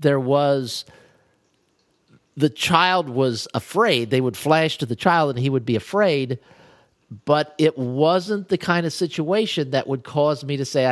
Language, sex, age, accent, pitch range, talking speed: English, male, 50-69, American, 115-145 Hz, 165 wpm